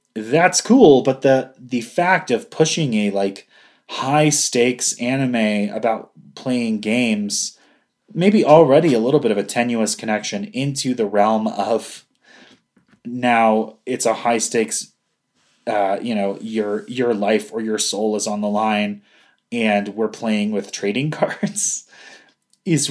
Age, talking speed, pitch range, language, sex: 20-39, 140 wpm, 110-145 Hz, English, male